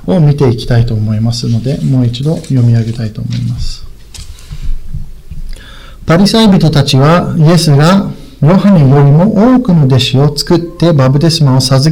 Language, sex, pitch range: Japanese, male, 125-175 Hz